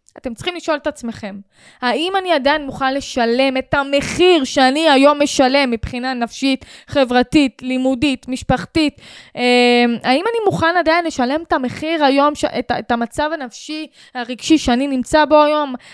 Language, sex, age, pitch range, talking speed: Hebrew, female, 10-29, 235-285 Hz, 140 wpm